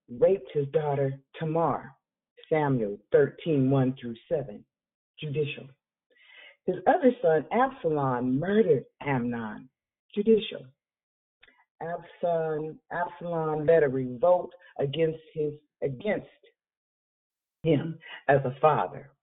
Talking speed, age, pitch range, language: 85 wpm, 50-69, 135-175 Hz, English